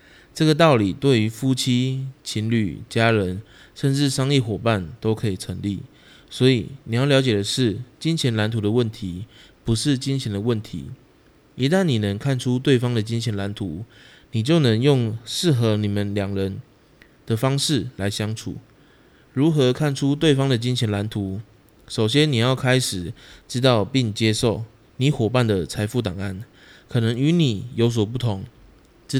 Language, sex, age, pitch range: Chinese, male, 20-39, 105-130 Hz